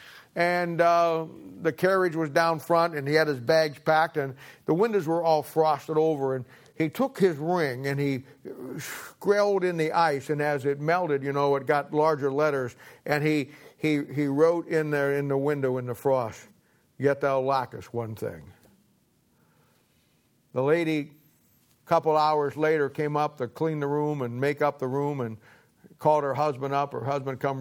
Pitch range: 130-160 Hz